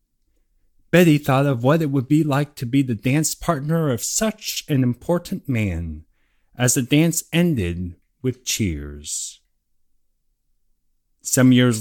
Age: 30-49